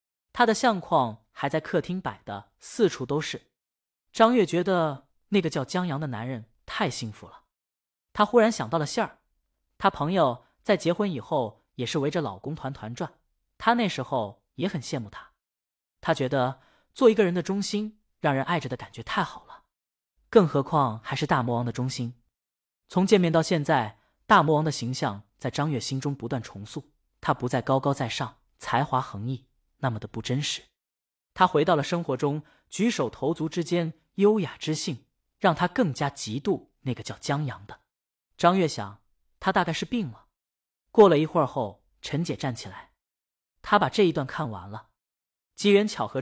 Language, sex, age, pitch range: Chinese, female, 20-39, 125-175 Hz